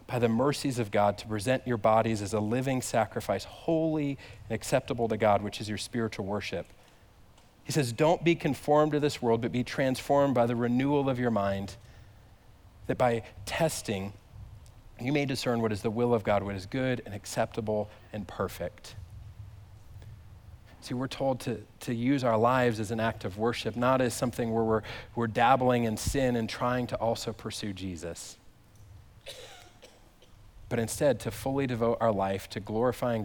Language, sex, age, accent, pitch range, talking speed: English, male, 40-59, American, 100-125 Hz, 175 wpm